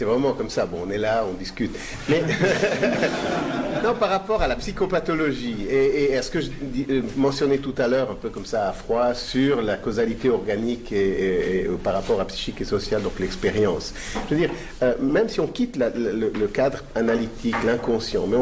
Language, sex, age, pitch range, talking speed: French, male, 50-69, 125-200 Hz, 210 wpm